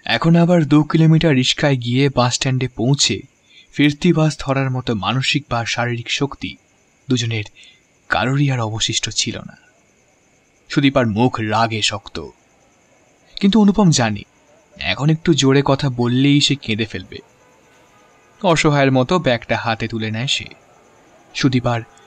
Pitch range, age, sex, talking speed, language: 110-140 Hz, 20-39, male, 115 wpm, Bengali